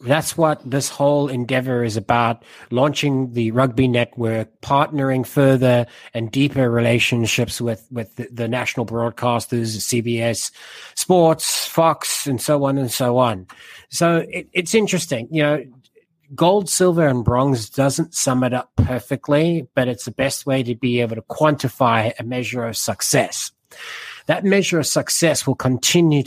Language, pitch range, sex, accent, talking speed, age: English, 120-150 Hz, male, Australian, 150 wpm, 30-49